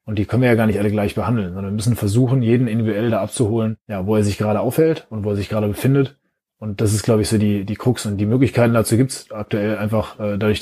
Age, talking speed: 20-39, 275 wpm